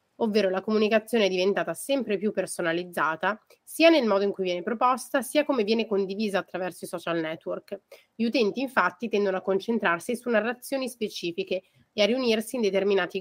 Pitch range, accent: 185-220 Hz, native